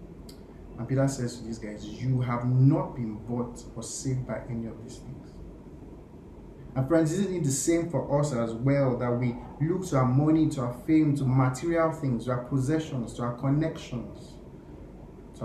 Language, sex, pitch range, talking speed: English, male, 115-150 Hz, 185 wpm